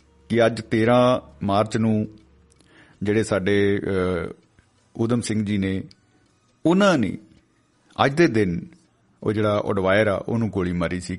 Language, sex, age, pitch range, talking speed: Punjabi, male, 50-69, 95-115 Hz, 130 wpm